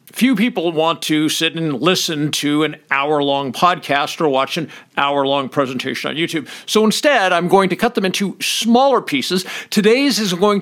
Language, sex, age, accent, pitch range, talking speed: English, male, 50-69, American, 155-215 Hz, 175 wpm